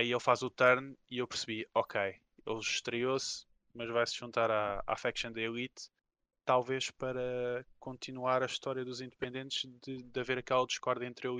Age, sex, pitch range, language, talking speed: 20-39, male, 120-135 Hz, Portuguese, 180 wpm